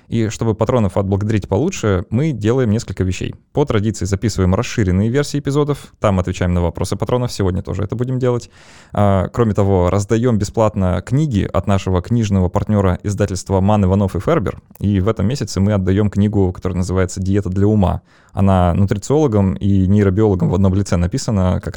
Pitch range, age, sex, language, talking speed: 95-110 Hz, 20-39, male, Russian, 165 wpm